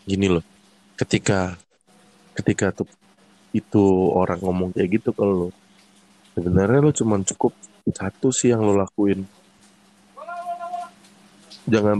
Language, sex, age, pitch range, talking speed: Indonesian, male, 20-39, 95-105 Hz, 110 wpm